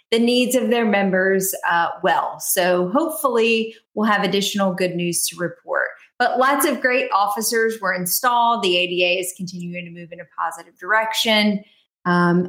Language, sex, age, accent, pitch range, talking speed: English, female, 30-49, American, 180-230 Hz, 165 wpm